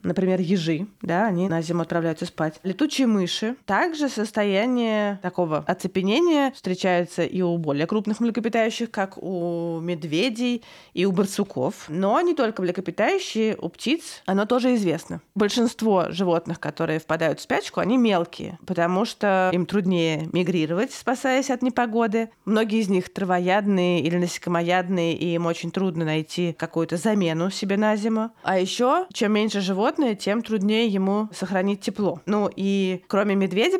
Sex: female